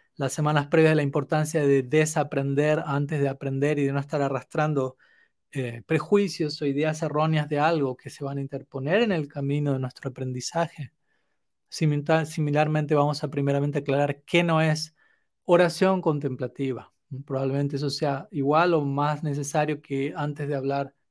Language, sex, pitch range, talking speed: Spanish, male, 140-170 Hz, 155 wpm